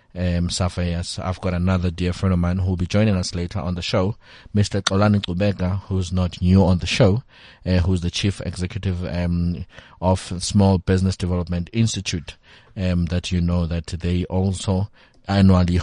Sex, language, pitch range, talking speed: male, English, 90-100 Hz, 180 wpm